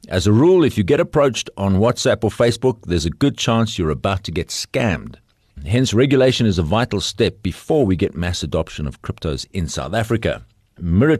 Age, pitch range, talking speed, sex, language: 50-69, 80-120 Hz, 200 wpm, male, English